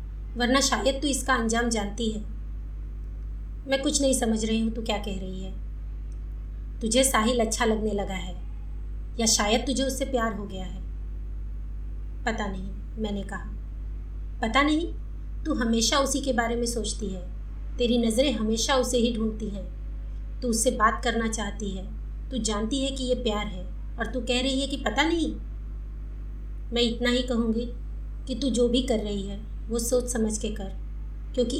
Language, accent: Hindi, native